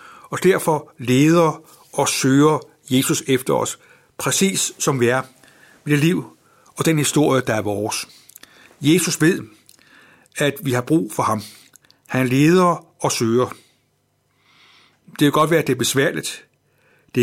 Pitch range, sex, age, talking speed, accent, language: 130-155 Hz, male, 60-79, 145 wpm, native, Danish